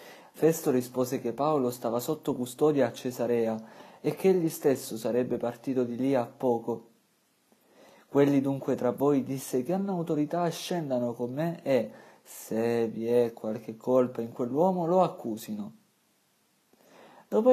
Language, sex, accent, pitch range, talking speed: Italian, male, native, 120-150 Hz, 140 wpm